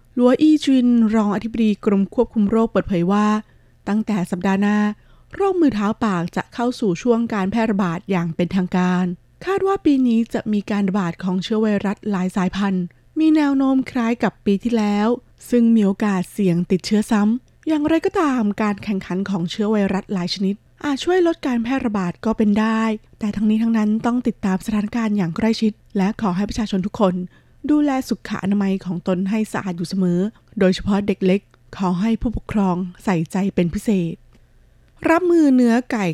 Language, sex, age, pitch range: Thai, female, 20-39, 185-225 Hz